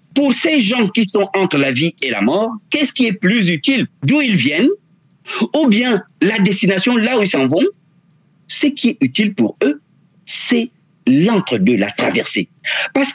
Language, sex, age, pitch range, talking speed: French, male, 50-69, 170-260 Hz, 180 wpm